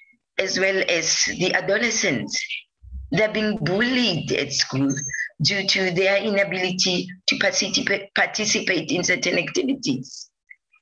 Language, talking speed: English, 110 wpm